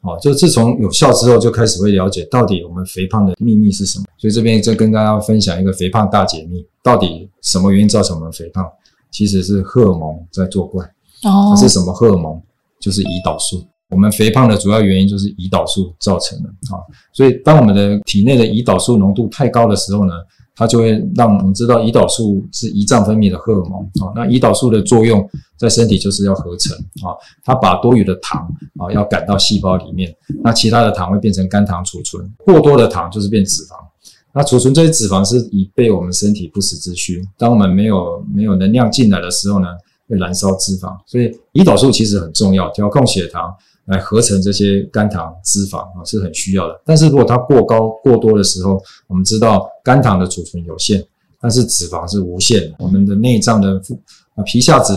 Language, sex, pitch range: Chinese, male, 95-115 Hz